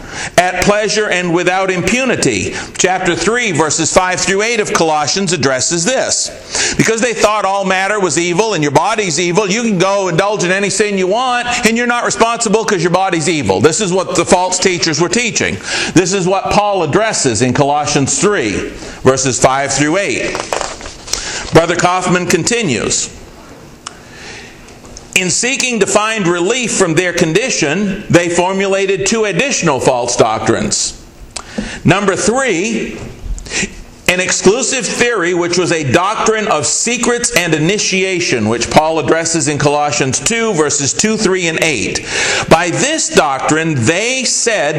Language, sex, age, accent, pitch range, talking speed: English, male, 50-69, American, 160-210 Hz, 145 wpm